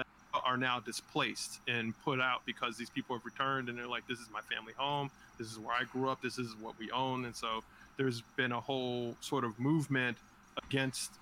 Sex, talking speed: male, 215 wpm